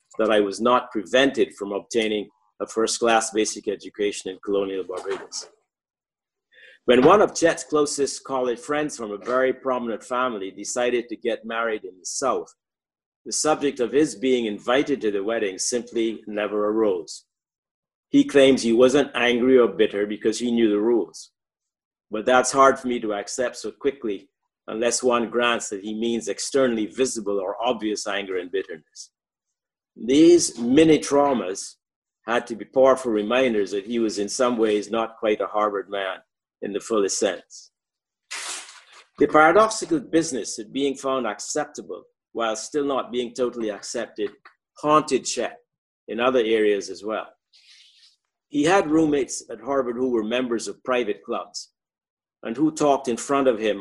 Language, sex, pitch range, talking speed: English, male, 110-145 Hz, 155 wpm